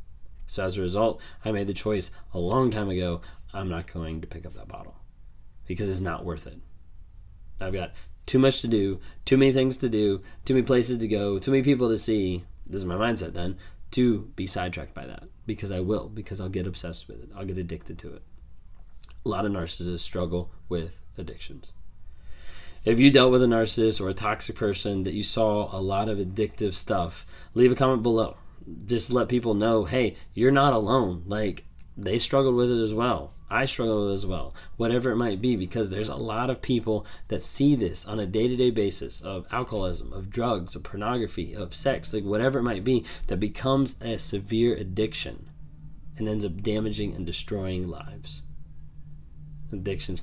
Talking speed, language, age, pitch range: 195 wpm, English, 20-39, 90-120 Hz